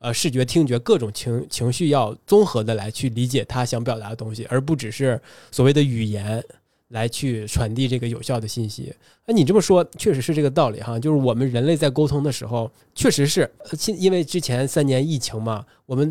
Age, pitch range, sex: 20-39, 120-160 Hz, male